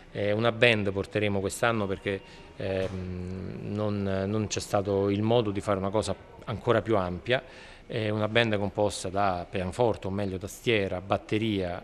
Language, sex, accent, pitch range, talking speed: Italian, male, native, 100-125 Hz, 145 wpm